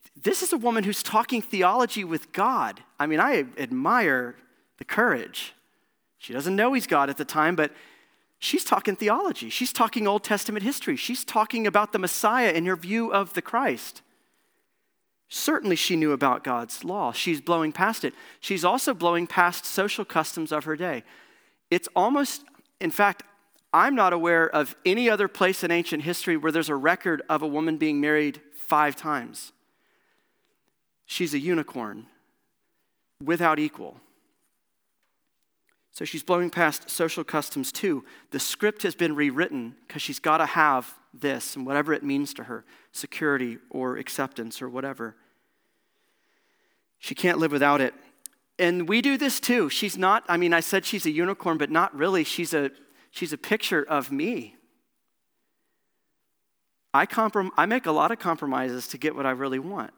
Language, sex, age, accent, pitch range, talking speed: English, male, 40-59, American, 150-220 Hz, 165 wpm